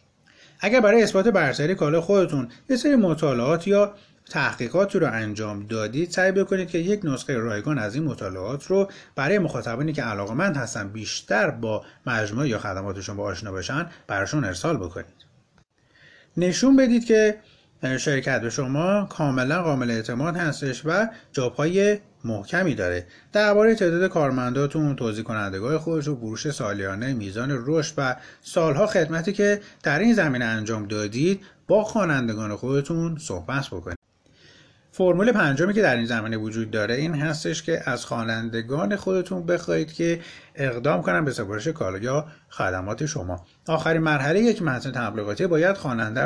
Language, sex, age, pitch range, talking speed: Persian, male, 30-49, 120-175 Hz, 145 wpm